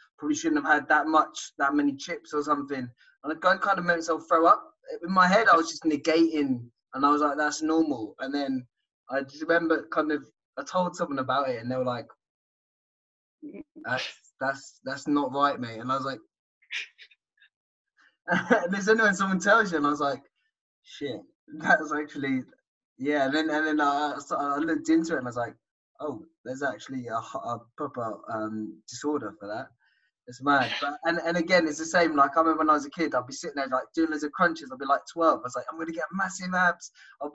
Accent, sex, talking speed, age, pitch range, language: British, male, 220 wpm, 20-39, 140-175 Hz, English